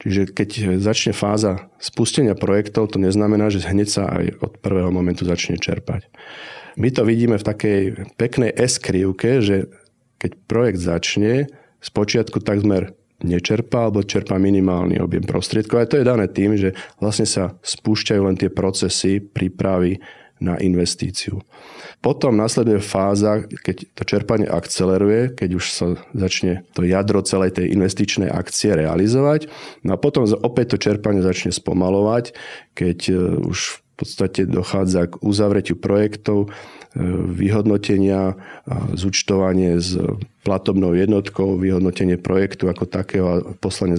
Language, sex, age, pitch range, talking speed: Slovak, male, 40-59, 95-105 Hz, 130 wpm